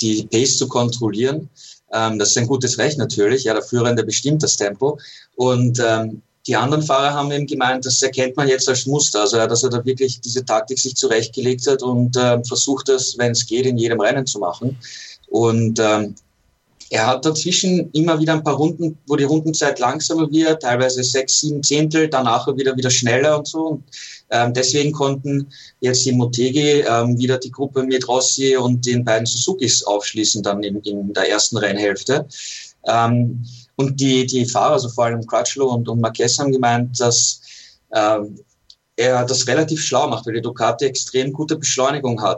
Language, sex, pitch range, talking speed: German, male, 120-140 Hz, 185 wpm